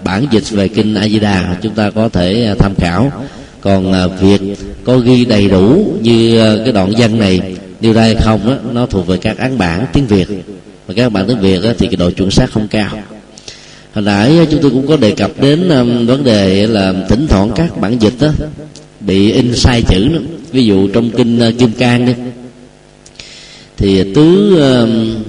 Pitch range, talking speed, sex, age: 100-135 Hz, 190 wpm, male, 20-39